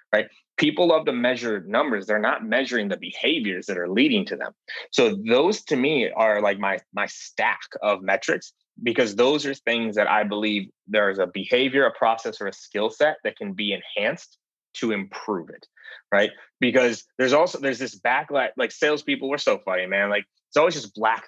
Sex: male